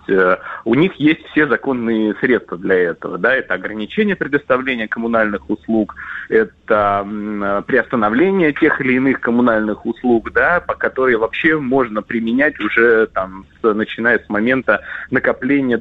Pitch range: 100-130 Hz